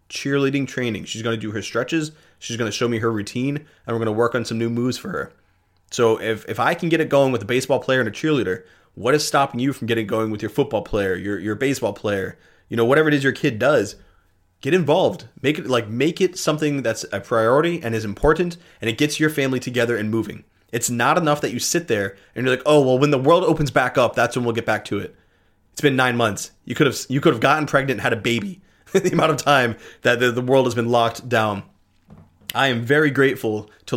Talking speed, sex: 255 wpm, male